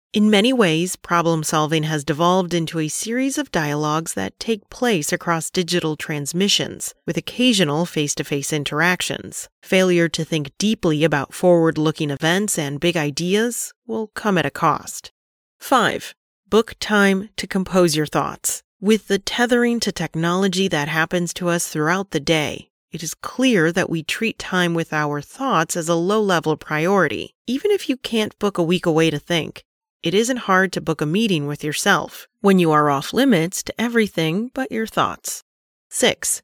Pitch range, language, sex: 155-210 Hz, English, female